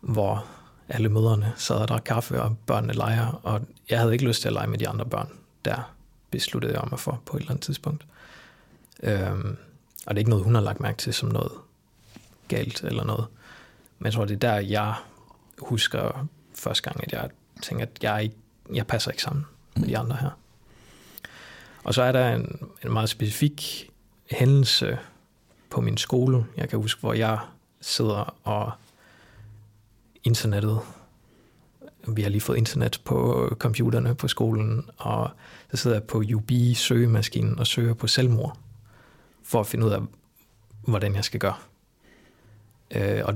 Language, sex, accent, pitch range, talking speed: Danish, male, native, 110-130 Hz, 165 wpm